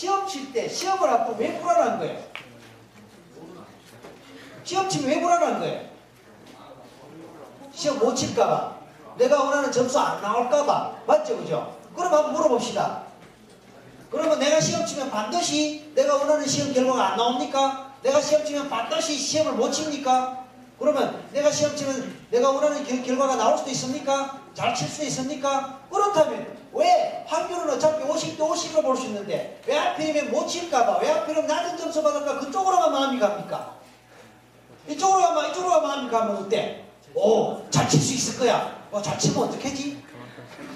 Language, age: Korean, 40-59